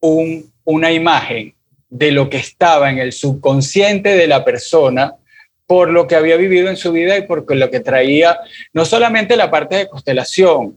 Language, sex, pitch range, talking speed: Spanish, male, 135-180 Hz, 180 wpm